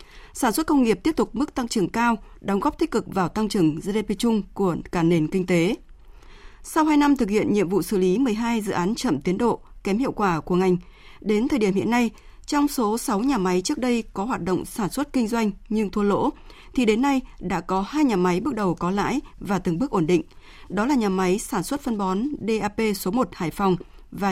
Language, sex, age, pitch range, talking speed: Vietnamese, female, 20-39, 185-255 Hz, 240 wpm